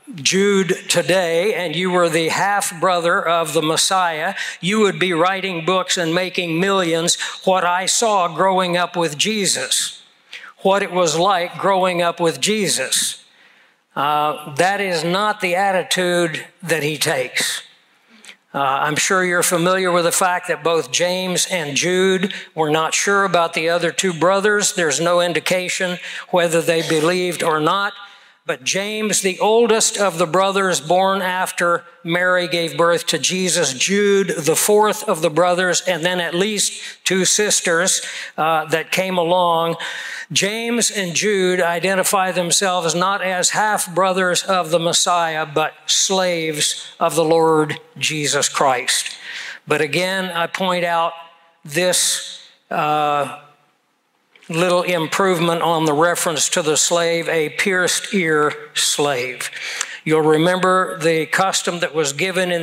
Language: English